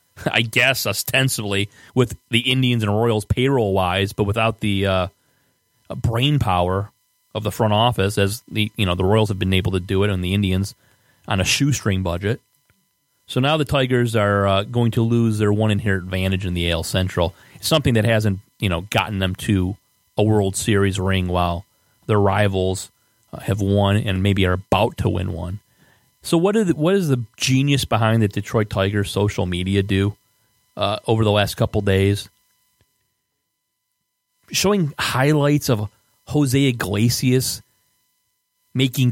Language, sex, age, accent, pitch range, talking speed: English, male, 30-49, American, 100-125 Hz, 160 wpm